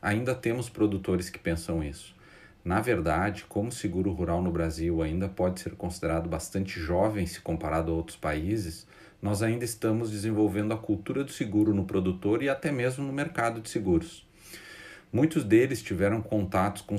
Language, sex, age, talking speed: Portuguese, male, 40-59, 165 wpm